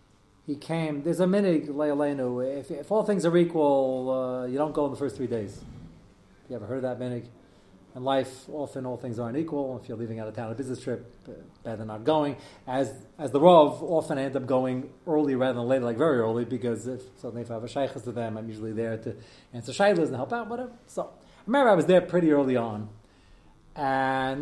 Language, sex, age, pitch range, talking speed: English, male, 30-49, 115-150 Hz, 235 wpm